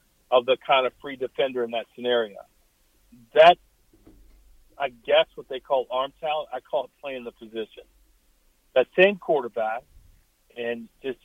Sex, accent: male, American